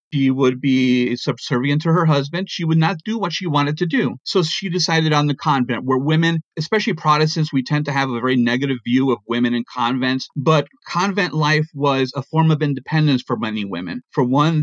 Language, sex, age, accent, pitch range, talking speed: English, male, 30-49, American, 125-160 Hz, 210 wpm